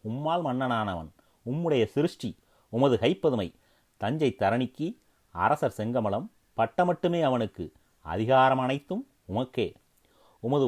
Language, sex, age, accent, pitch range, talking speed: Tamil, male, 30-49, native, 105-125 Hz, 95 wpm